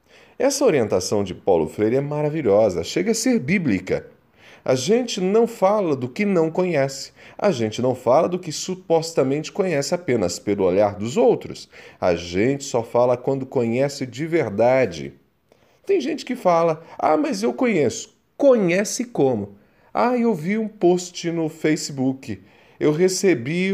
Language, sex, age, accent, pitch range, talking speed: Portuguese, male, 40-59, Brazilian, 120-185 Hz, 150 wpm